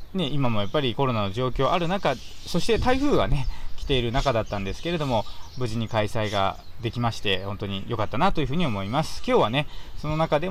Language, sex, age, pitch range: Japanese, male, 20-39, 110-150 Hz